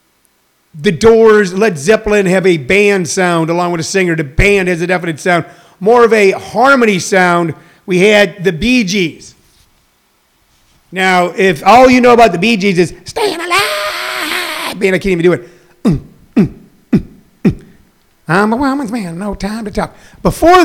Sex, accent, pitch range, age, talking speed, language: male, American, 175-220 Hz, 50-69, 170 wpm, English